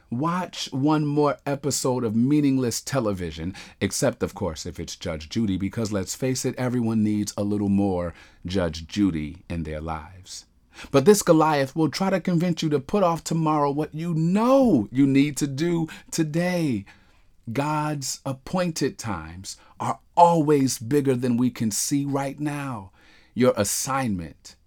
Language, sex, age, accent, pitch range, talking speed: English, male, 40-59, American, 100-145 Hz, 150 wpm